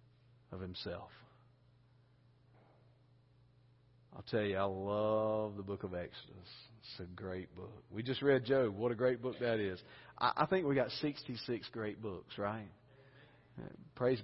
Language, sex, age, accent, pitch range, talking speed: English, male, 40-59, American, 100-125 Hz, 145 wpm